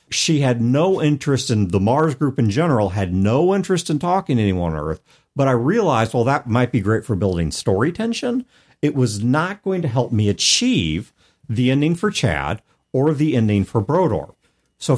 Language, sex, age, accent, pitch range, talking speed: English, male, 50-69, American, 100-145 Hz, 195 wpm